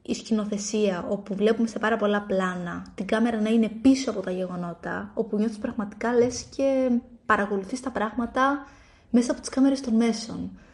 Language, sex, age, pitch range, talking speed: Greek, female, 20-39, 210-265 Hz, 170 wpm